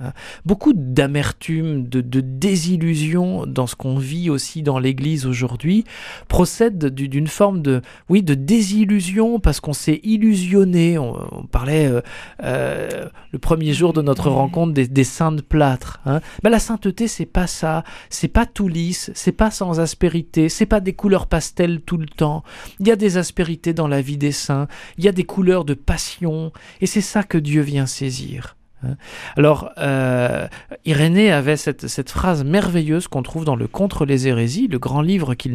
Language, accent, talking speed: French, French, 180 wpm